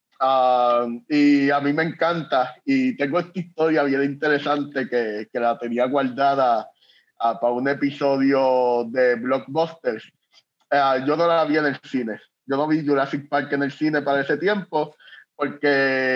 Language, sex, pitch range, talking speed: Spanish, male, 135-170 Hz, 150 wpm